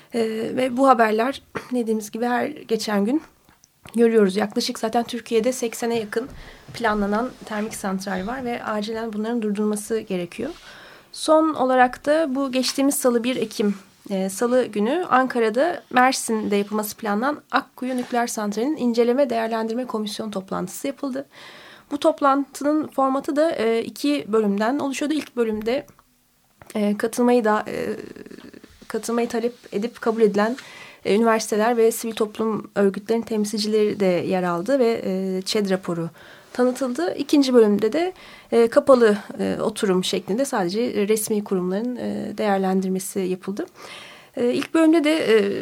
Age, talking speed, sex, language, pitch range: 30-49, 130 wpm, female, Turkish, 210-250 Hz